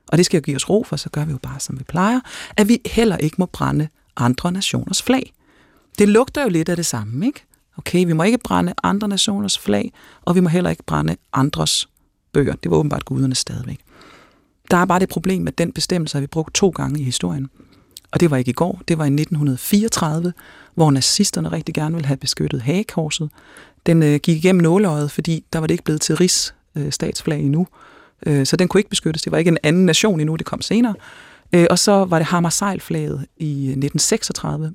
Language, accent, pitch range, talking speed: Danish, native, 150-205 Hz, 215 wpm